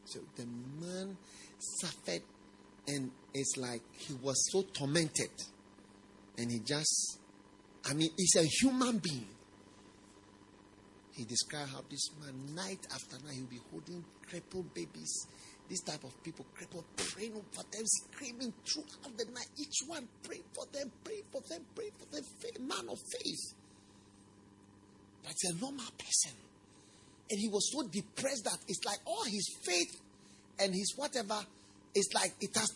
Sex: male